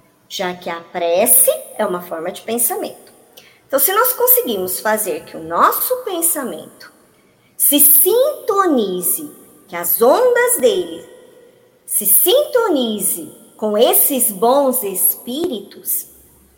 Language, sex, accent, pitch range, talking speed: Portuguese, male, Brazilian, 225-325 Hz, 110 wpm